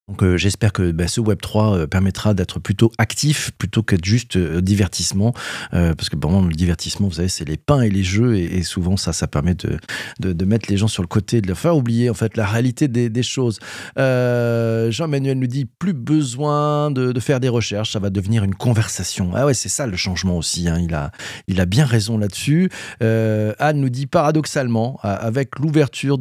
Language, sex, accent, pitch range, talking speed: French, male, French, 100-130 Hz, 200 wpm